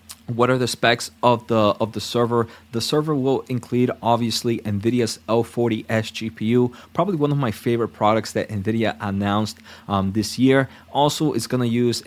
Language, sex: English, male